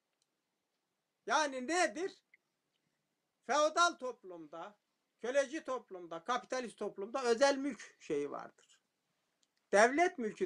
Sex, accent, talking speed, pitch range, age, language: male, native, 80 wpm, 210-300 Hz, 60-79, Turkish